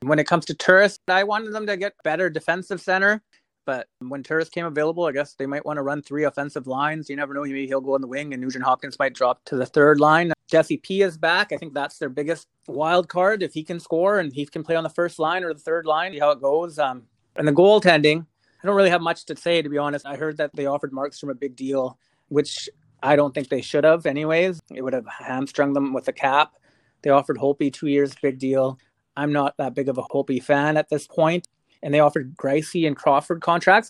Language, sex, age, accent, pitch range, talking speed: English, male, 30-49, American, 140-175 Hz, 250 wpm